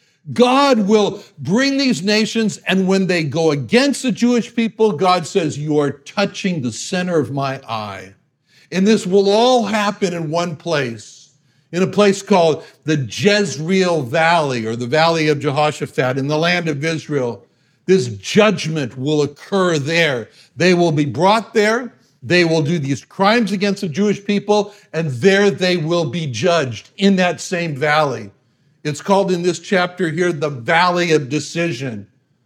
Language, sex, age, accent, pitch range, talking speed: English, male, 60-79, American, 140-185 Hz, 160 wpm